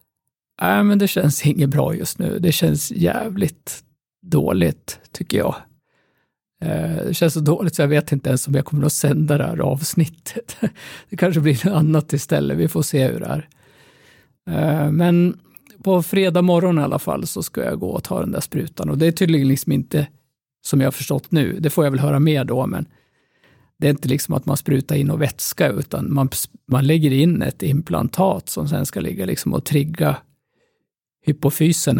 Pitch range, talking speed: 140-165 Hz, 195 wpm